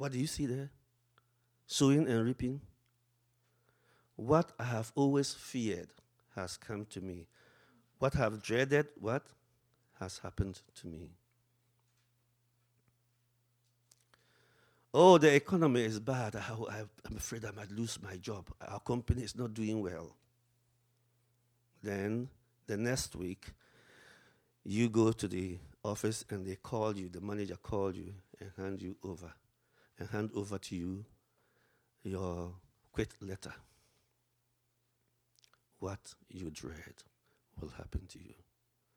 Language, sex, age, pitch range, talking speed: English, male, 50-69, 95-120 Hz, 125 wpm